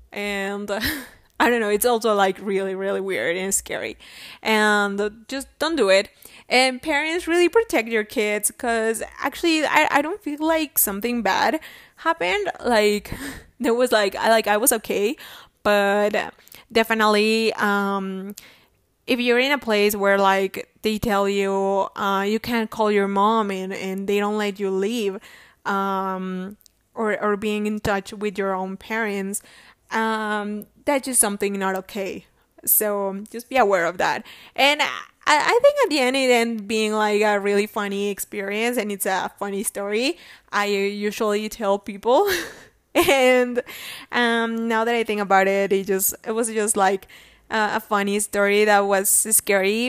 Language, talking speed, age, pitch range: English, 160 wpm, 20-39, 200-235 Hz